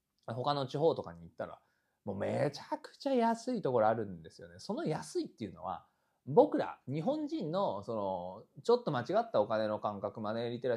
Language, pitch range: Japanese, 110-180 Hz